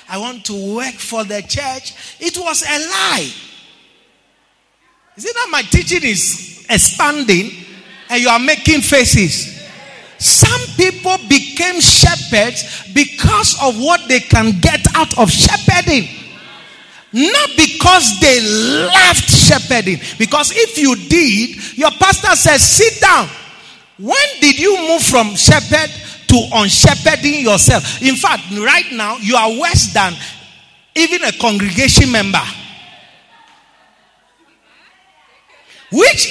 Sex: male